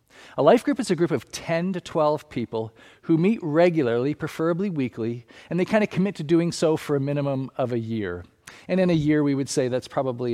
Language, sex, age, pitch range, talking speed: English, male, 40-59, 120-155 Hz, 225 wpm